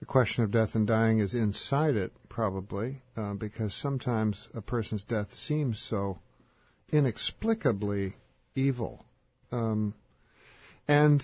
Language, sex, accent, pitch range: English, male, American, 115-140 Hz